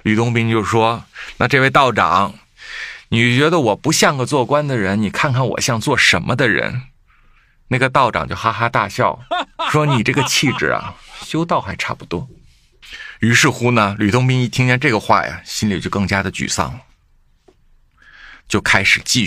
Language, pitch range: Chinese, 100-130 Hz